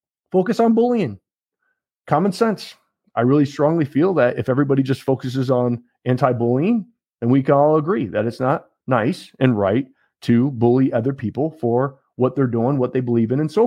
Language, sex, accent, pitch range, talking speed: English, male, American, 115-150 Hz, 180 wpm